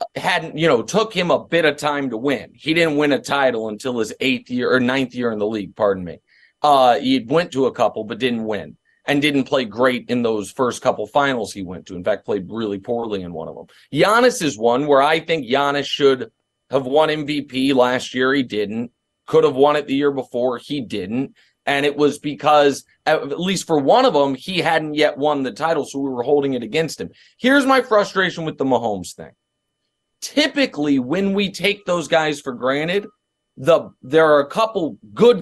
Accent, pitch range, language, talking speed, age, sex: American, 135-195 Hz, English, 215 wpm, 30-49, male